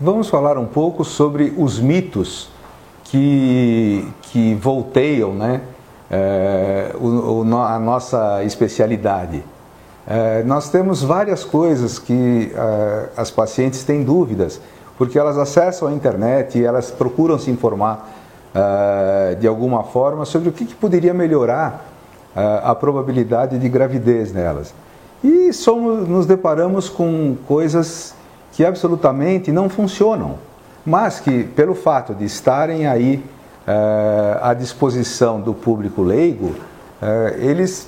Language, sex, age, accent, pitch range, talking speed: English, male, 50-69, Brazilian, 115-160 Hz, 110 wpm